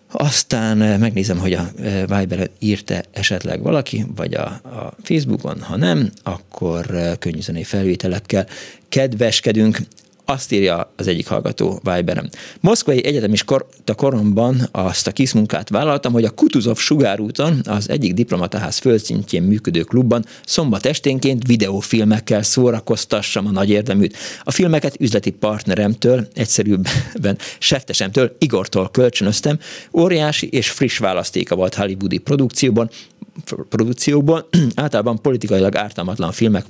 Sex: male